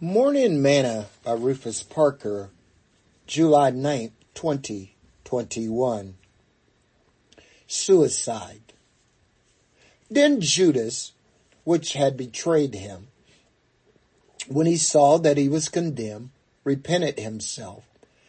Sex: male